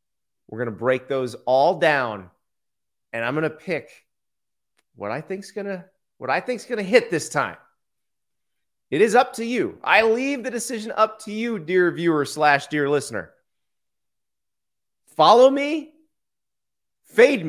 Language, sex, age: English, male, 30-49